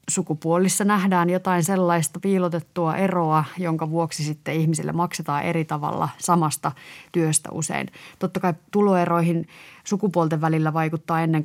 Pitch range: 160-190 Hz